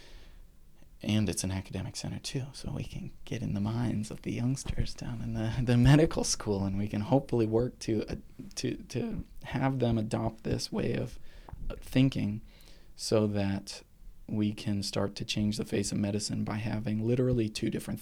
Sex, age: male, 20-39